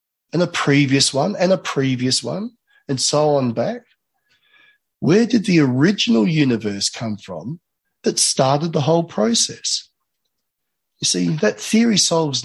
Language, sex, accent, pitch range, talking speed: English, male, Australian, 115-165 Hz, 140 wpm